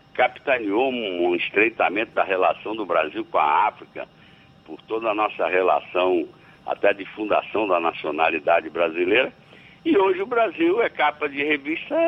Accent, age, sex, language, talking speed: Brazilian, 60-79, male, Portuguese, 140 wpm